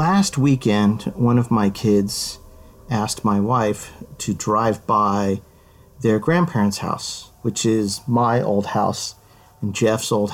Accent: American